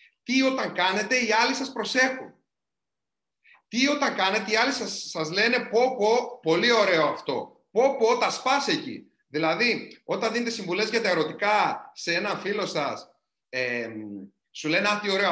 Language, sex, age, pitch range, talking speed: Greek, male, 30-49, 185-260 Hz, 150 wpm